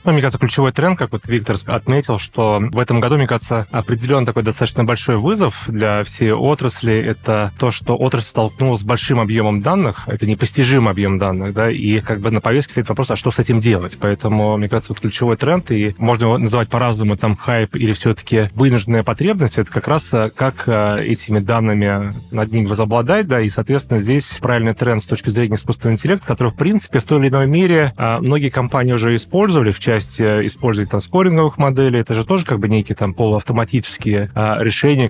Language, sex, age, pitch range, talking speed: Russian, male, 30-49, 110-130 Hz, 195 wpm